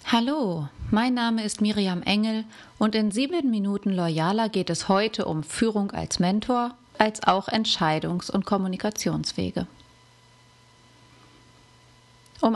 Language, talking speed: German, 115 wpm